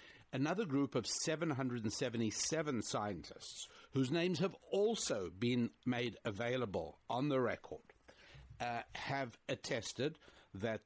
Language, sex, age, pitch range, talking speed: English, male, 60-79, 110-140 Hz, 105 wpm